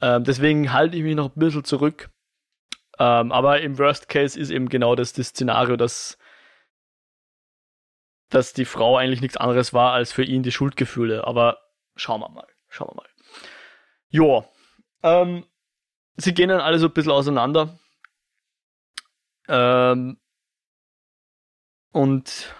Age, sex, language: 20-39, male, German